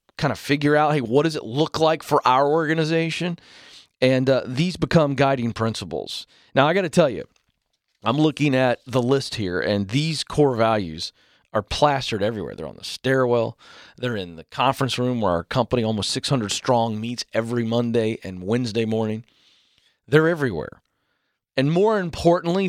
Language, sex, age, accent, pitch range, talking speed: English, male, 40-59, American, 115-165 Hz, 170 wpm